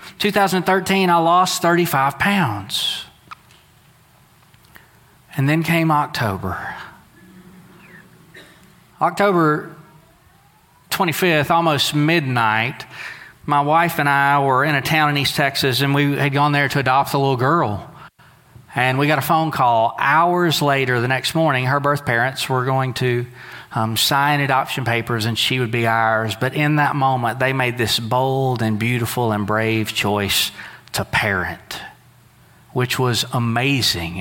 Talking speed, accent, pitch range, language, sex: 135 wpm, American, 115-150 Hz, English, male